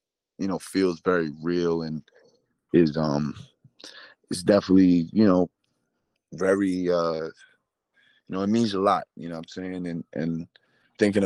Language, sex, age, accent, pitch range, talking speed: English, male, 20-39, American, 85-100 Hz, 150 wpm